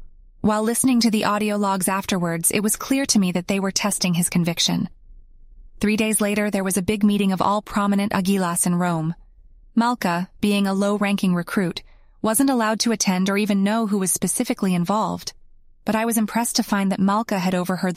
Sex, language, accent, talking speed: female, English, American, 195 wpm